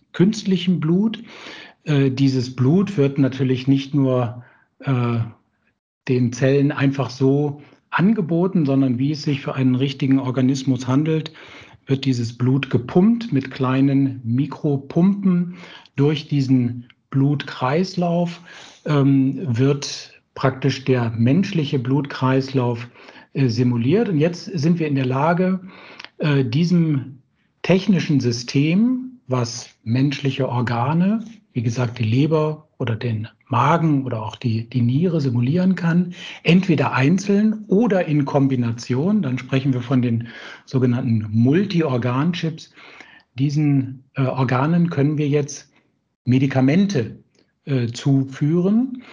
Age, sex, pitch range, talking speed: 60-79, male, 130-165 Hz, 105 wpm